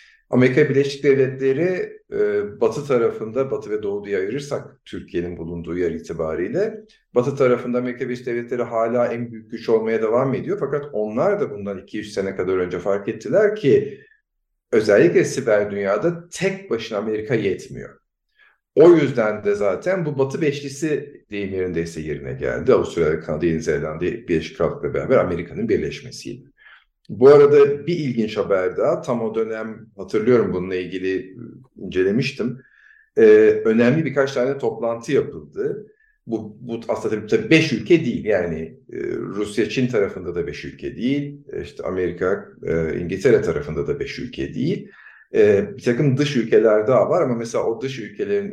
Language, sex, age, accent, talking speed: Turkish, male, 50-69, native, 150 wpm